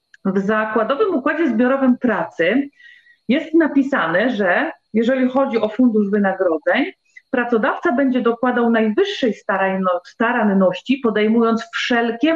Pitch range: 210-265 Hz